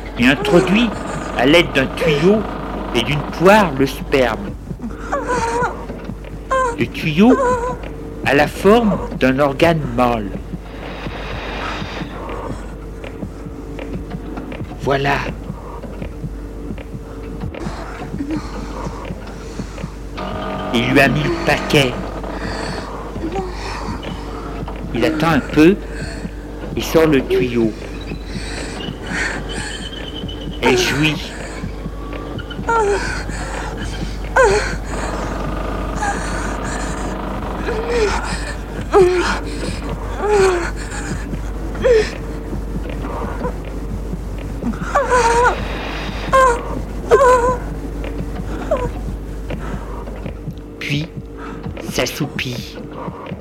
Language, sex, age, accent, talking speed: French, male, 60-79, French, 40 wpm